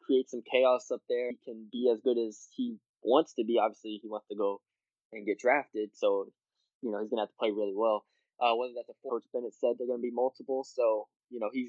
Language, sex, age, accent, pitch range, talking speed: English, male, 10-29, American, 115-180 Hz, 245 wpm